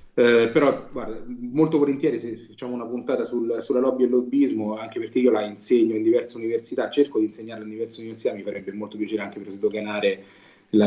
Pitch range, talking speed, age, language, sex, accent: 110-155 Hz, 210 wpm, 30-49, Italian, male, native